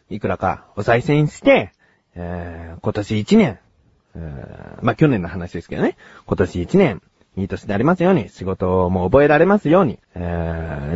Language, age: Japanese, 40-59